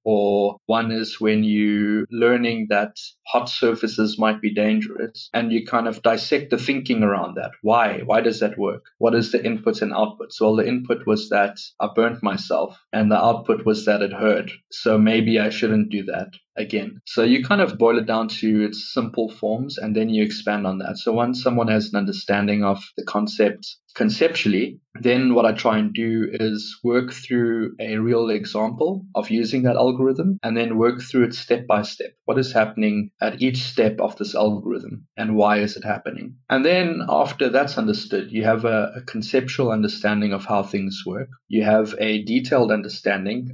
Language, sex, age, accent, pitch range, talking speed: English, male, 20-39, South African, 105-120 Hz, 190 wpm